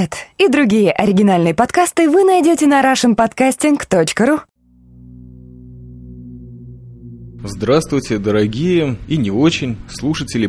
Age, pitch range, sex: 20-39, 100-140 Hz, male